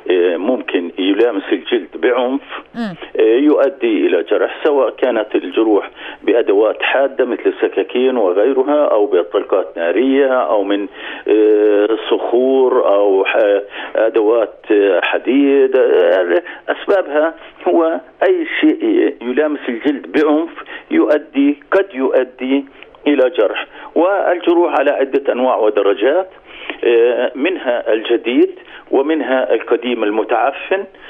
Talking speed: 90 wpm